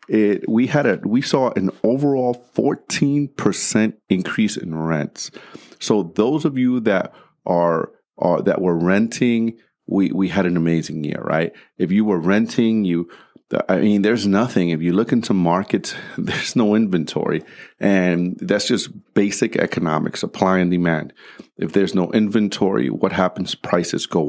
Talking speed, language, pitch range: 155 wpm, English, 90-115 Hz